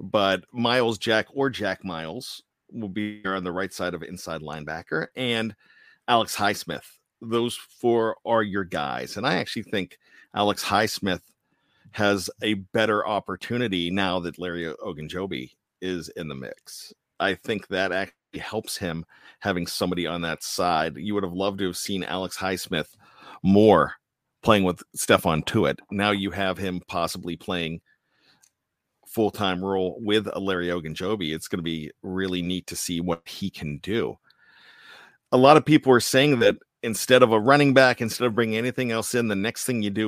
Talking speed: 170 wpm